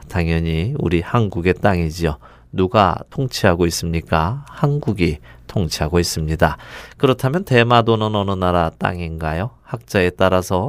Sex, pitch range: male, 85-120 Hz